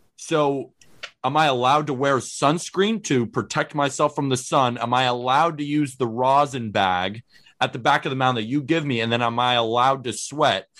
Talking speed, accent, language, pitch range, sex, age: 210 wpm, American, English, 120-150 Hz, male, 30-49